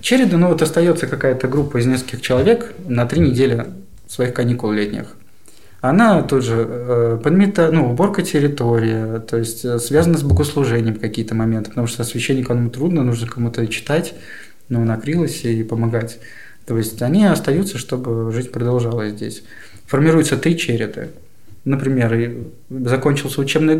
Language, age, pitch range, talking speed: Russian, 20-39, 120-155 Hz, 145 wpm